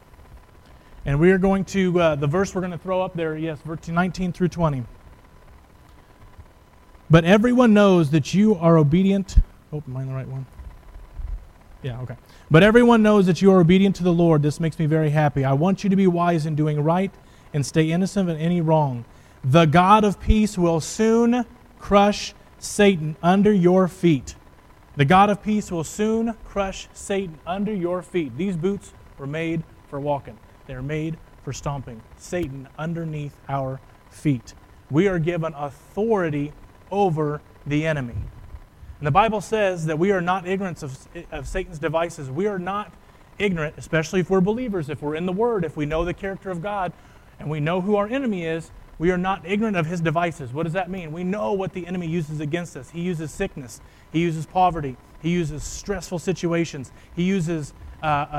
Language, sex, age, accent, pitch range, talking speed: English, male, 30-49, American, 145-190 Hz, 185 wpm